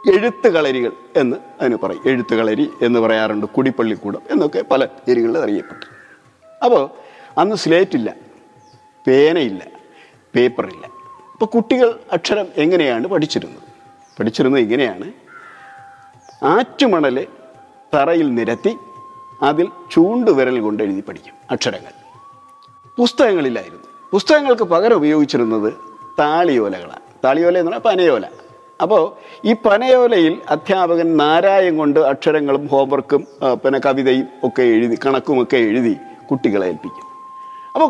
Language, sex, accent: Malayalam, male, native